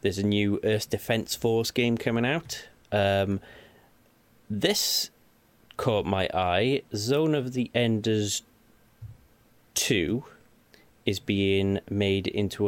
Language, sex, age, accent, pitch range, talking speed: English, male, 30-49, British, 90-110 Hz, 110 wpm